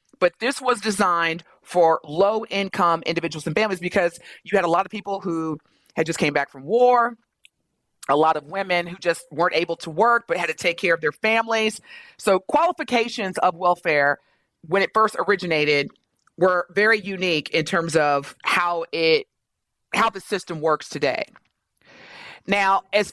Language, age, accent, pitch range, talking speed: English, 30-49, American, 175-235 Hz, 165 wpm